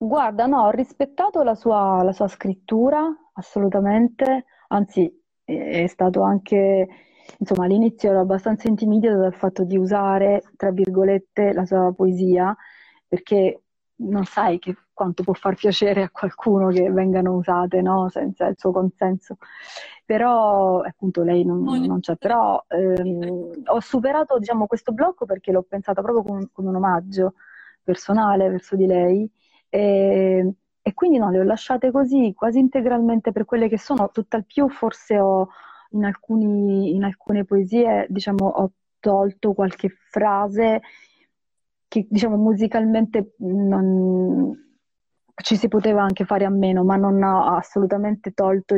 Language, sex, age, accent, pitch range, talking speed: Italian, female, 30-49, native, 185-220 Hz, 140 wpm